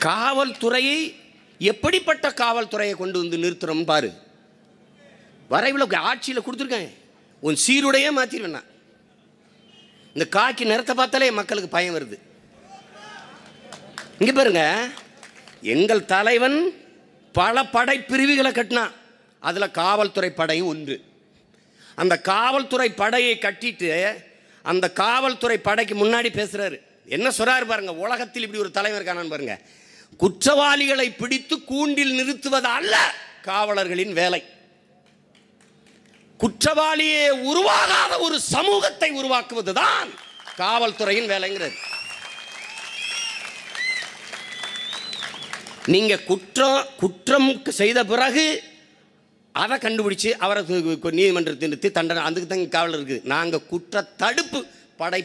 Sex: male